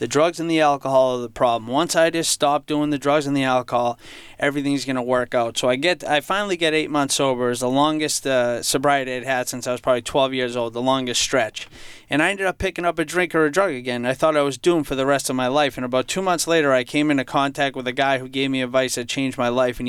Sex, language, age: male, English, 30-49